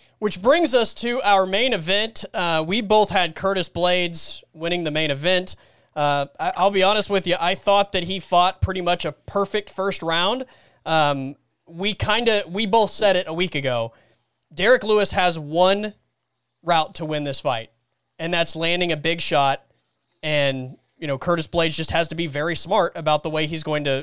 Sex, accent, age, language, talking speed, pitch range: male, American, 20-39, English, 195 wpm, 160-205 Hz